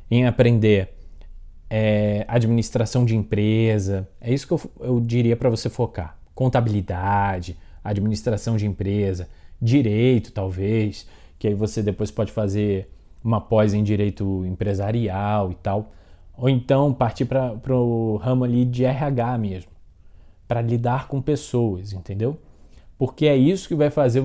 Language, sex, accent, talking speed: Portuguese, male, Brazilian, 135 wpm